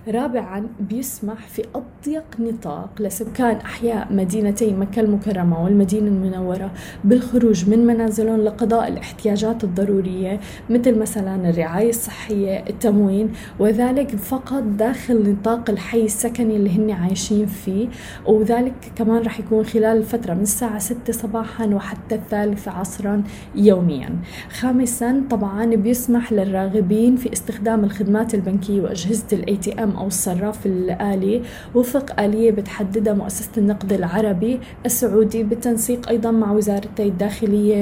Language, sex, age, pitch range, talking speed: Arabic, female, 20-39, 200-225 Hz, 115 wpm